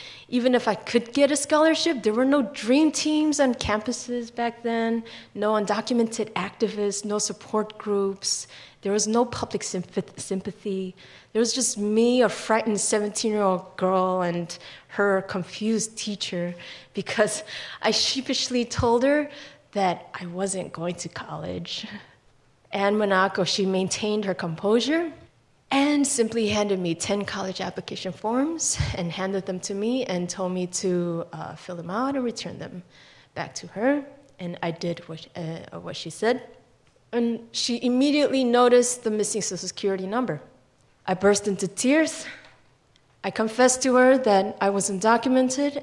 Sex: female